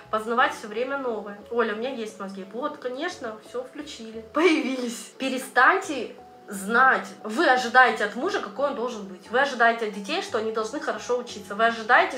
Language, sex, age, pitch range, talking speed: Russian, female, 20-39, 225-300 Hz, 170 wpm